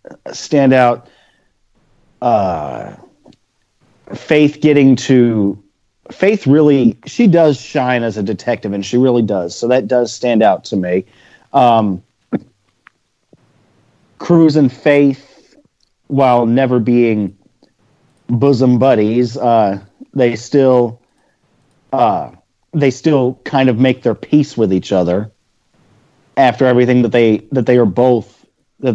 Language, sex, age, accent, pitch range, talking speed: English, male, 30-49, American, 110-130 Hz, 115 wpm